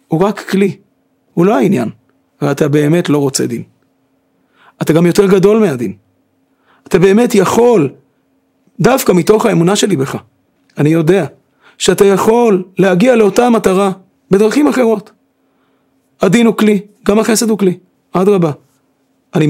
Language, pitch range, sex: Hebrew, 165-235 Hz, male